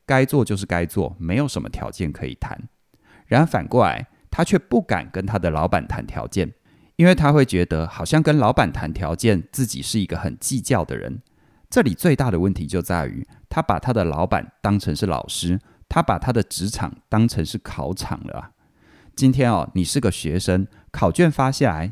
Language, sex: Chinese, male